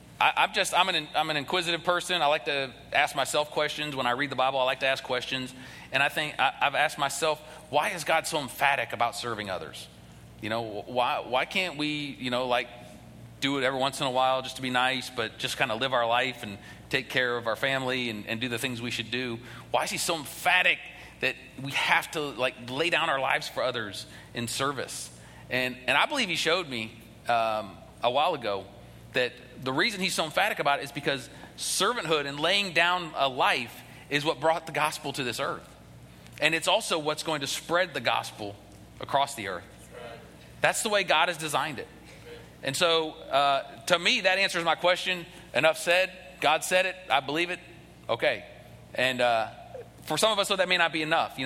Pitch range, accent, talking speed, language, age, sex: 120-165 Hz, American, 210 wpm, English, 40-59, male